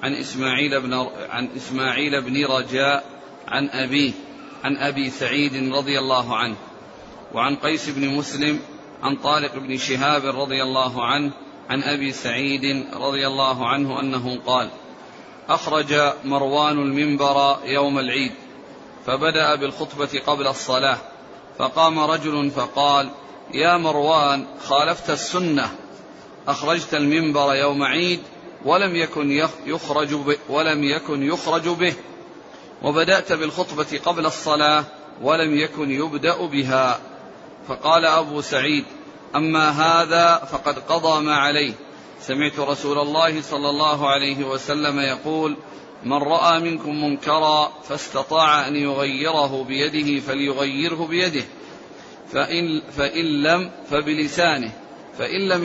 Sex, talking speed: male, 105 wpm